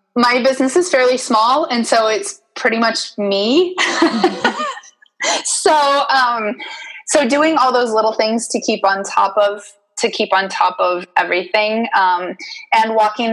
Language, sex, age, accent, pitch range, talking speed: English, female, 20-39, American, 195-260 Hz, 150 wpm